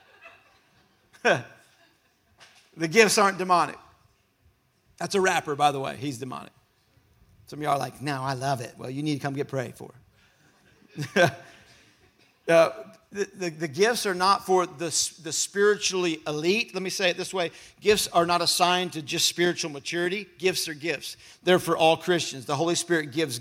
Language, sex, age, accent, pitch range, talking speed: English, male, 50-69, American, 160-195 Hz, 165 wpm